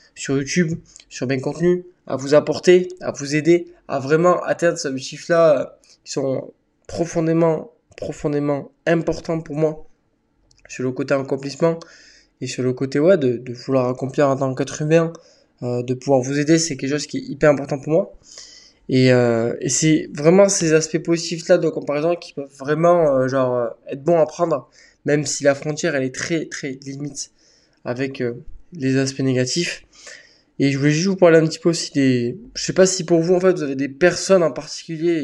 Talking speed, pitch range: 195 wpm, 135-165 Hz